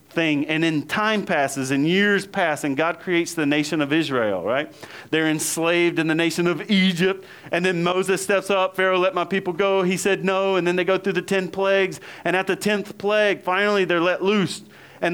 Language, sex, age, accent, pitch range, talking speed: English, male, 40-59, American, 160-200 Hz, 210 wpm